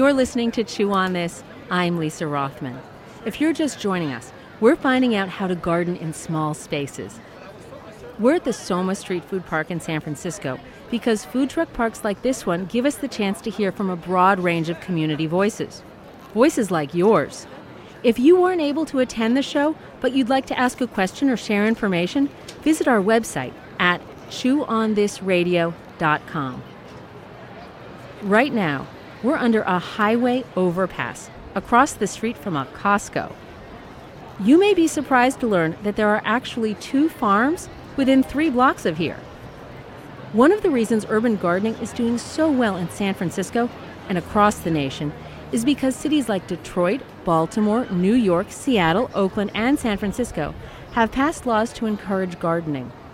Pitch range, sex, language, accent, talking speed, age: 175-250 Hz, female, English, American, 165 wpm, 40-59